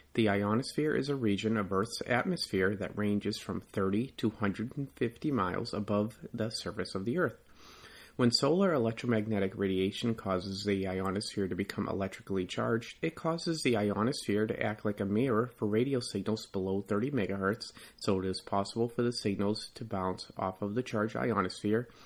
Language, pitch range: English, 100-120 Hz